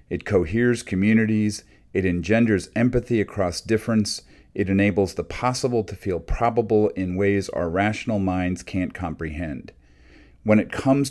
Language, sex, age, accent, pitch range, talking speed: English, male, 40-59, American, 85-110 Hz, 135 wpm